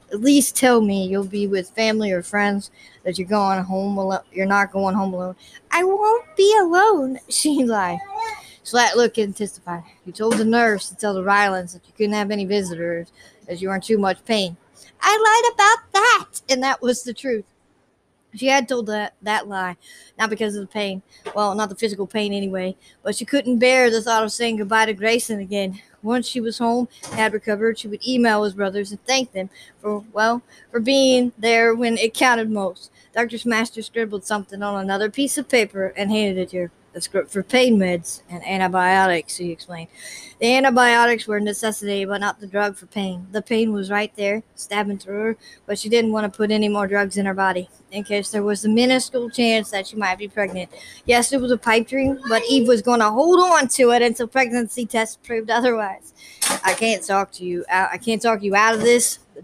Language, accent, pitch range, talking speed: English, American, 195-235 Hz, 210 wpm